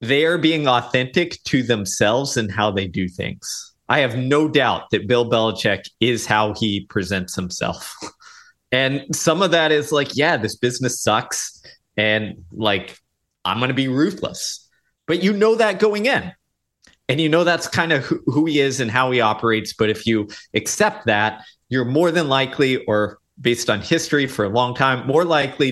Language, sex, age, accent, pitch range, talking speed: English, male, 30-49, American, 110-155 Hz, 180 wpm